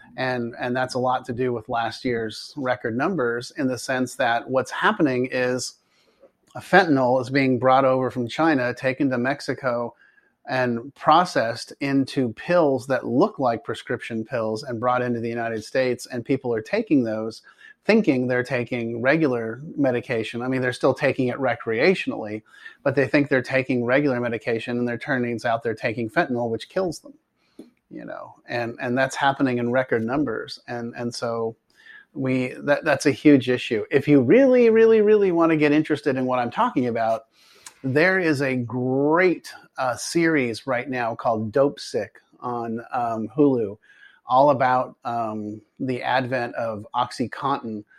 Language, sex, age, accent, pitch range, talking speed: English, male, 30-49, American, 120-140 Hz, 165 wpm